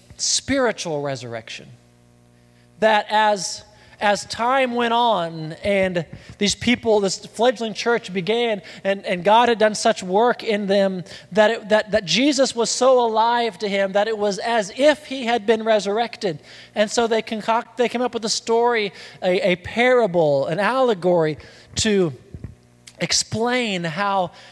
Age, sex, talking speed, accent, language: 20-39, male, 150 wpm, American, English